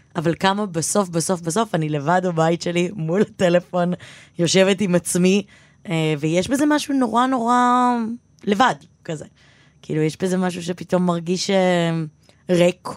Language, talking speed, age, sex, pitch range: Hebrew, 130 wpm, 20-39, female, 155-185 Hz